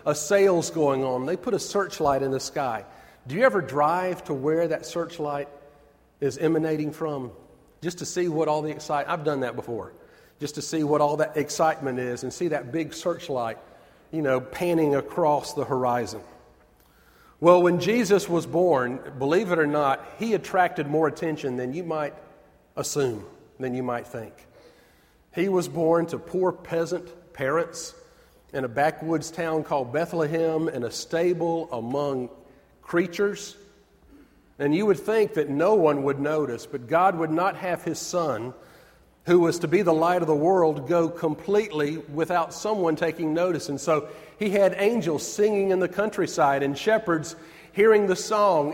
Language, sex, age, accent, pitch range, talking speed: English, male, 40-59, American, 145-185 Hz, 165 wpm